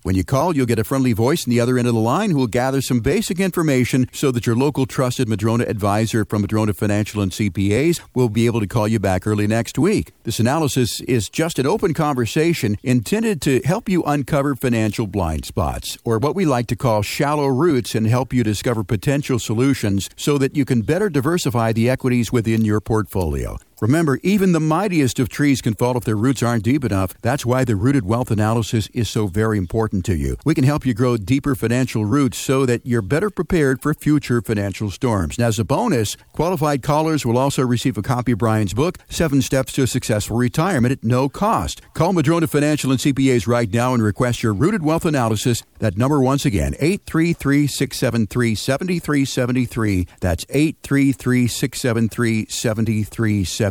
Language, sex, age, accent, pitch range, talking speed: English, male, 50-69, American, 110-140 Hz, 190 wpm